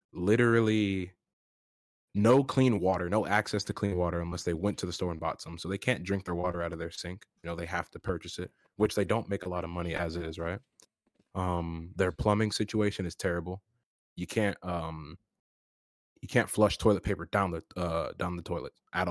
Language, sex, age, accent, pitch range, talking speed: English, male, 20-39, American, 85-105 Hz, 215 wpm